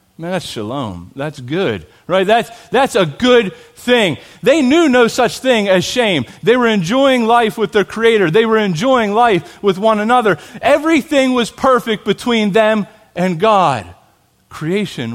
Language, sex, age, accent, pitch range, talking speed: English, male, 30-49, American, 145-215 Hz, 155 wpm